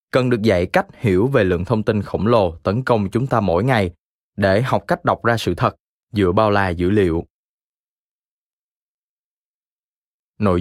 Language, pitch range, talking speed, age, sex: Vietnamese, 90-120 Hz, 170 wpm, 20-39, male